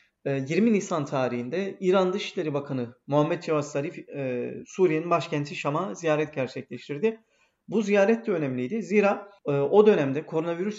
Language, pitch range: Turkish, 140-185 Hz